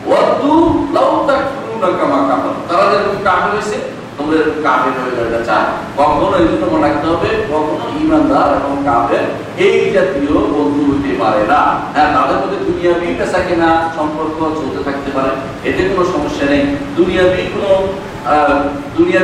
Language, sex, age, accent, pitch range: Bengali, male, 50-69, native, 150-200 Hz